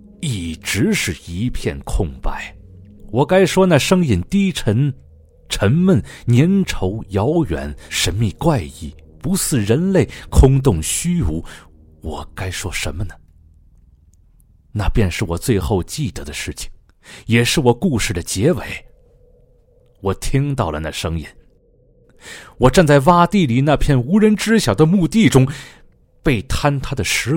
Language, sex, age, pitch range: Chinese, male, 30-49, 85-130 Hz